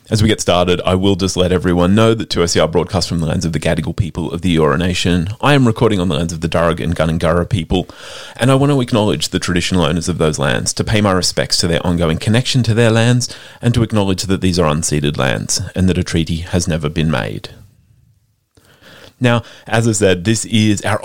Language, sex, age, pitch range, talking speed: English, male, 30-49, 85-120 Hz, 235 wpm